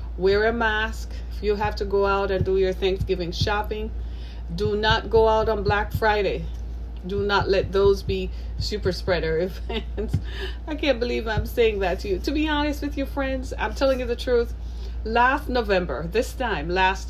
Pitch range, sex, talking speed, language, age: 175-240 Hz, female, 185 wpm, English, 30-49